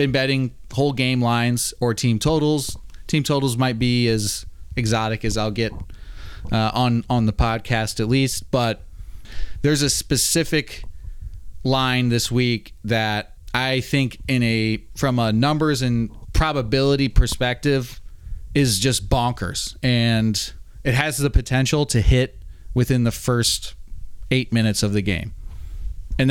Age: 30-49